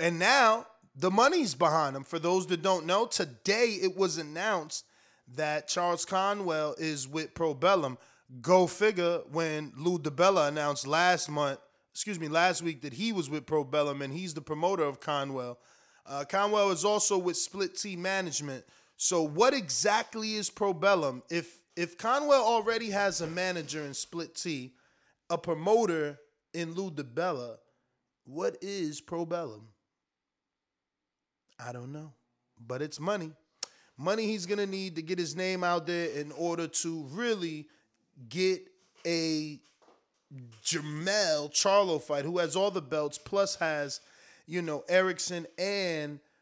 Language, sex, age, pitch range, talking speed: English, male, 20-39, 150-190 Hz, 145 wpm